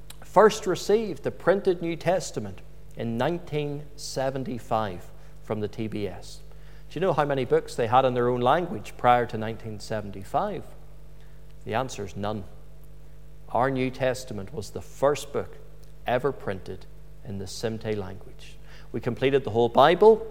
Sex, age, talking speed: male, 50-69, 140 wpm